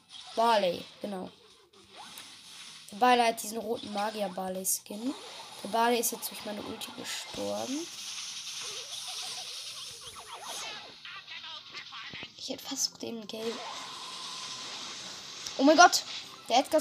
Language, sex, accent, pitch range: German, female, German, 230-330 Hz